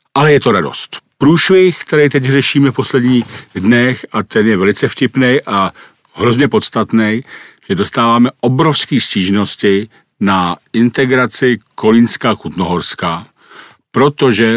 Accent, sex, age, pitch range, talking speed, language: native, male, 50-69, 105-130 Hz, 110 wpm, Czech